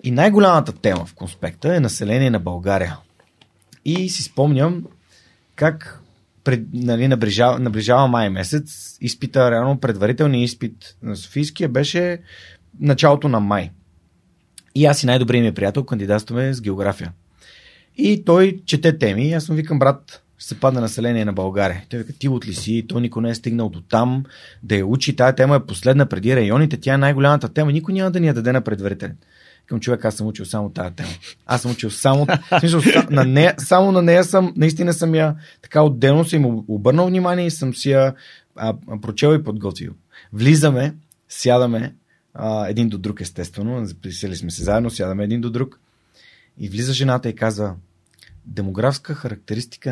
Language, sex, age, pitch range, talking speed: Bulgarian, male, 30-49, 105-145 Hz, 165 wpm